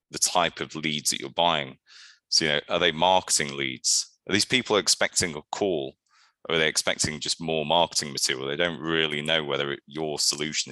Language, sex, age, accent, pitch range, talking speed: English, male, 30-49, British, 75-95 Hz, 200 wpm